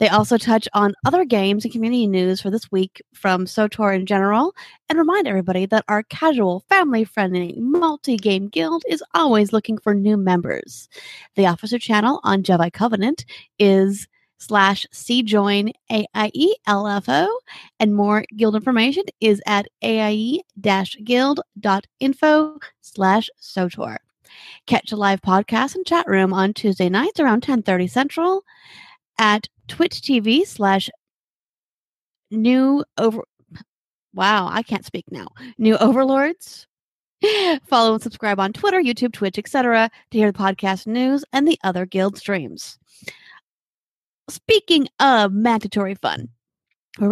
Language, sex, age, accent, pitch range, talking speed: English, female, 30-49, American, 200-270 Hz, 125 wpm